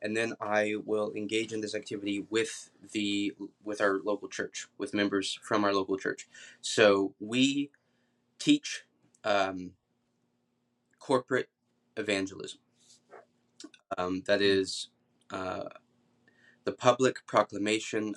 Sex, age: male, 20-39